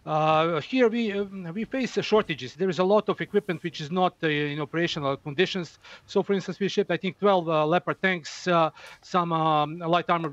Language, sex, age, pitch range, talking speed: English, male, 40-59, 155-195 Hz, 210 wpm